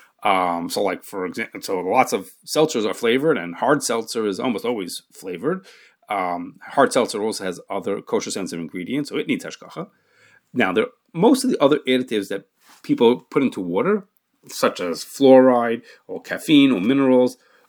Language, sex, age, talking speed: English, male, 30-49, 170 wpm